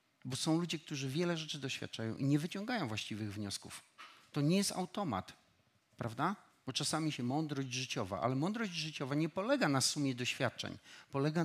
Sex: male